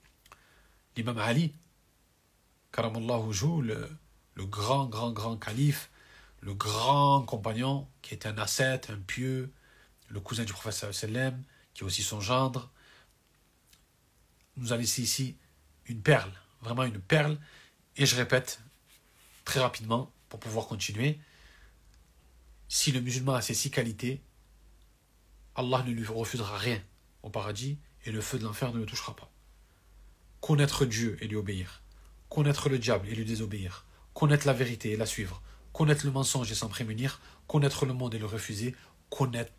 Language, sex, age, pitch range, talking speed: French, male, 40-59, 105-135 Hz, 145 wpm